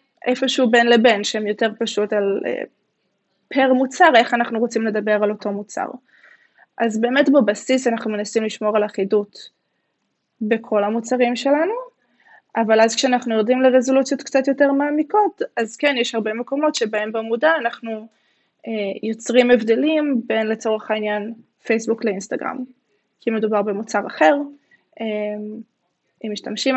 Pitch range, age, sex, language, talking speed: 220-255 Hz, 20-39, female, Hebrew, 130 wpm